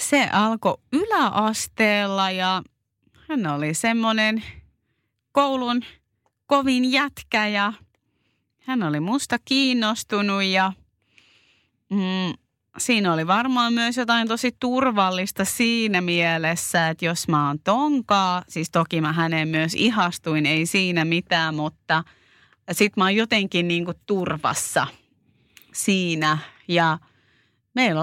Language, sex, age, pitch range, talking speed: Finnish, female, 30-49, 175-225 Hz, 105 wpm